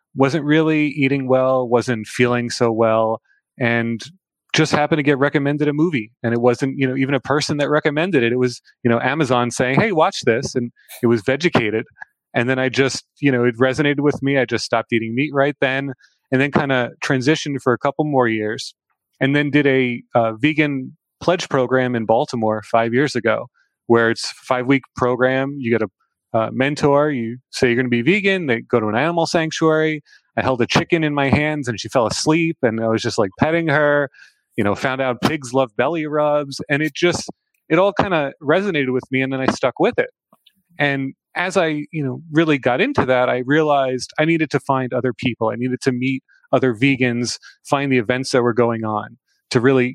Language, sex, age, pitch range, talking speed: English, male, 30-49, 120-145 Hz, 215 wpm